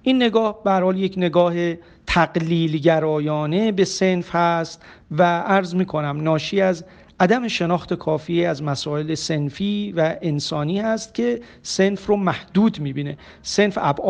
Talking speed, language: 130 wpm, Persian